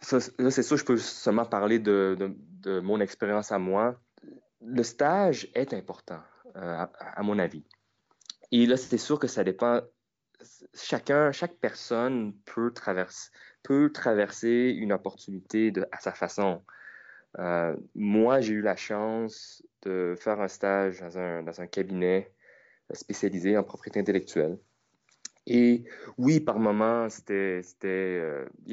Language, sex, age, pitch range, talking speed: French, male, 20-39, 95-120 Hz, 145 wpm